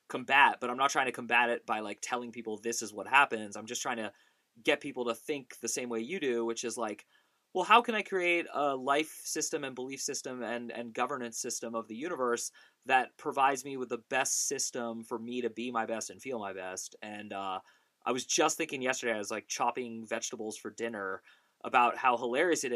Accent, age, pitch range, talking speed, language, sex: American, 20-39, 115-135 Hz, 225 wpm, English, male